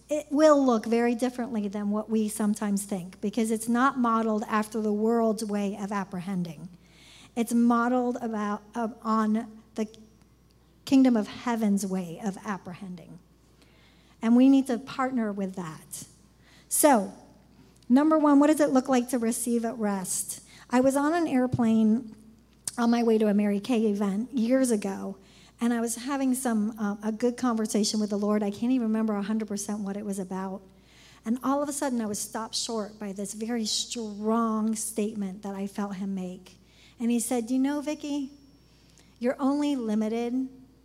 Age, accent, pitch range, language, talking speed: 50-69, American, 205-240 Hz, English, 170 wpm